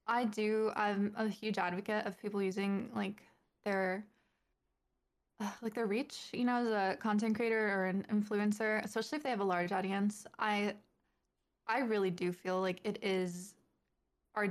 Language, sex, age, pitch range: English, female, 20-39, 195-230 Hz